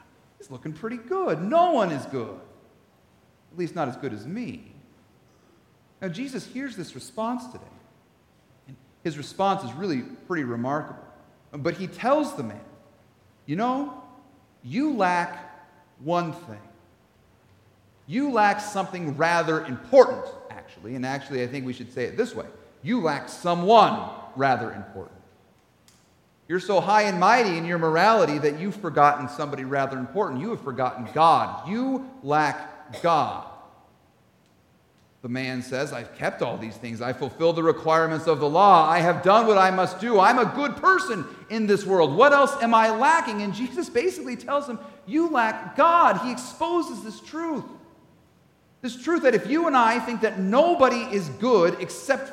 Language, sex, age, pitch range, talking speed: English, male, 40-59, 150-250 Hz, 160 wpm